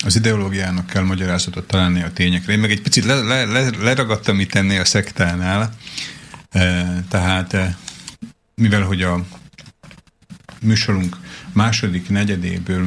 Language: Slovak